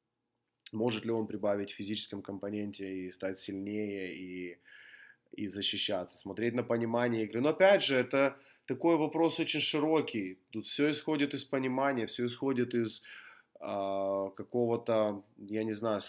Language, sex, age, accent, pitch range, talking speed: Russian, male, 20-39, native, 105-125 Hz, 140 wpm